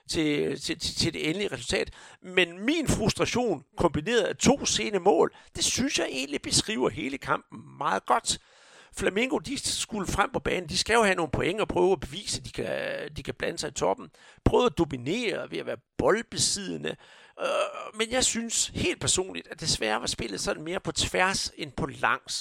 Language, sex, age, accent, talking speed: Danish, male, 60-79, native, 190 wpm